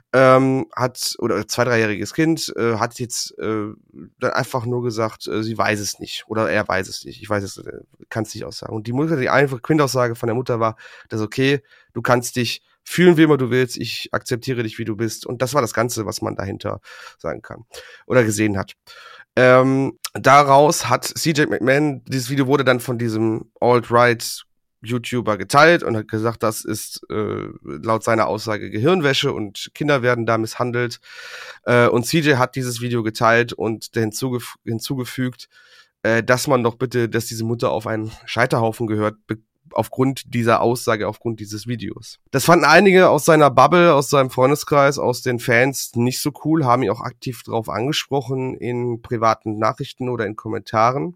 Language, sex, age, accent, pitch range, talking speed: German, male, 30-49, German, 115-130 Hz, 185 wpm